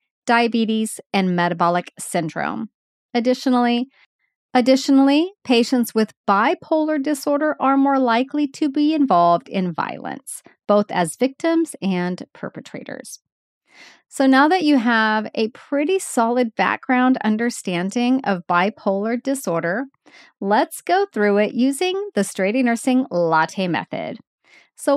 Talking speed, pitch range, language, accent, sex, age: 115 wpm, 200-275 Hz, English, American, female, 40-59